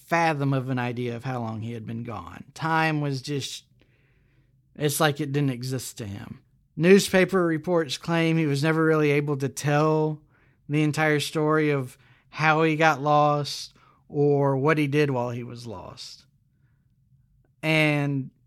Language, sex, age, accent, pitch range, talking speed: English, male, 40-59, American, 130-155 Hz, 155 wpm